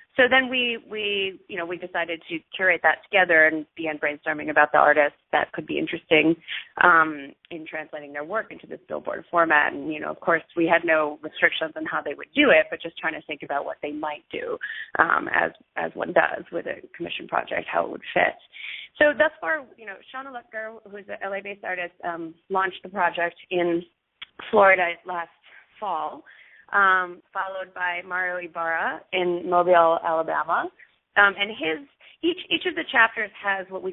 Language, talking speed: English, 195 wpm